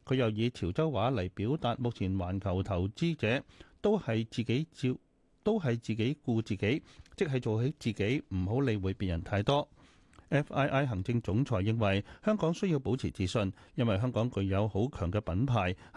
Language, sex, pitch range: Chinese, male, 100-140 Hz